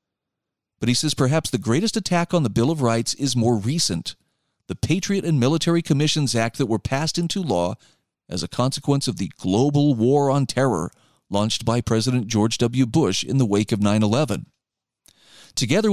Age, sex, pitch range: 40-59, male, 115-155 Hz